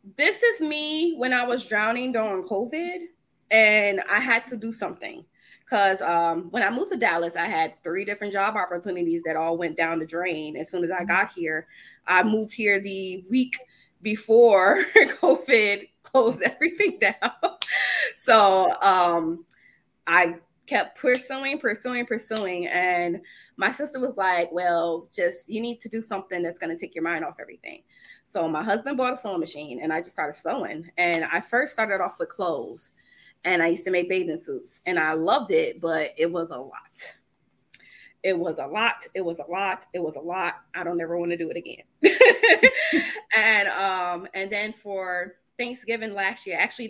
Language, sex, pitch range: English, female, 170-235 Hz